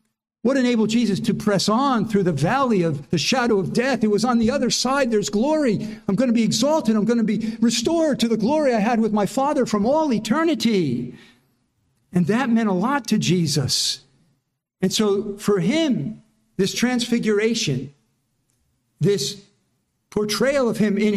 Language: English